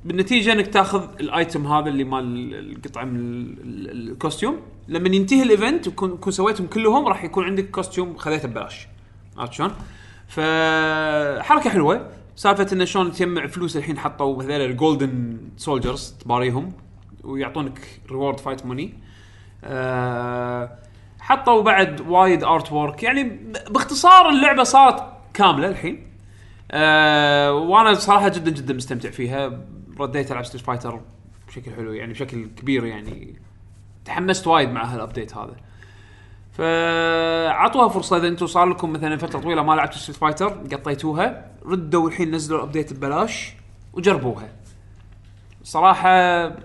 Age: 20-39